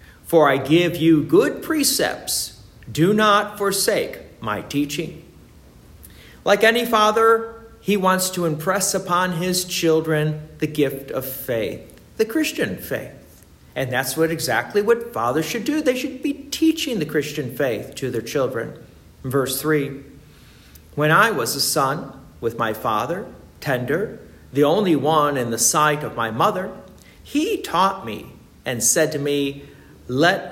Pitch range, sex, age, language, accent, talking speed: 140-220 Hz, male, 50-69, English, American, 145 wpm